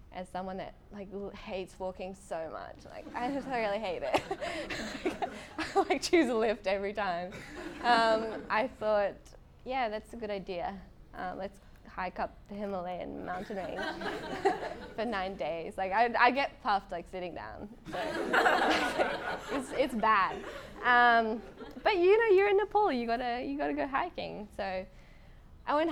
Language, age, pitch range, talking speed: English, 10-29, 190-245 Hz, 160 wpm